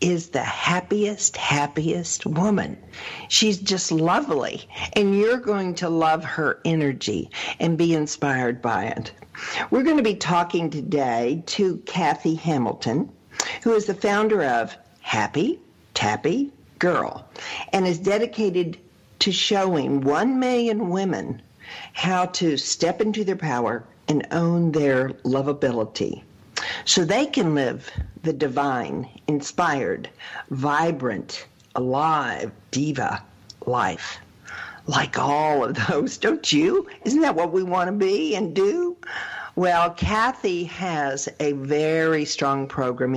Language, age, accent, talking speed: English, 50-69, American, 120 wpm